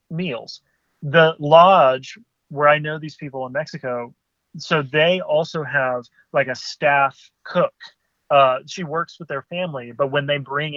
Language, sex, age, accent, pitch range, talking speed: English, male, 30-49, American, 130-155 Hz, 155 wpm